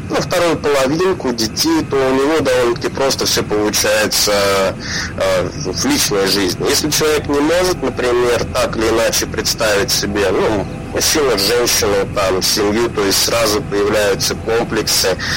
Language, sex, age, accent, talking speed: Russian, male, 30-49, native, 135 wpm